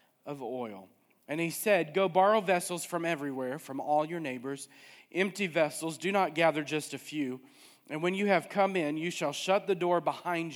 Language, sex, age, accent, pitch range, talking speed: English, male, 40-59, American, 140-175 Hz, 195 wpm